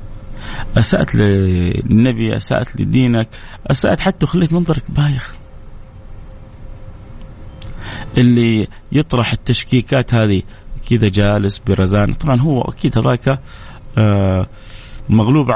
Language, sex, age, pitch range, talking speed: Arabic, male, 30-49, 105-135 Hz, 80 wpm